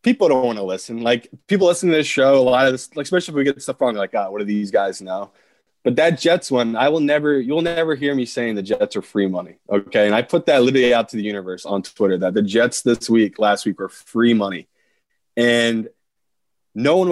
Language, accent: English, American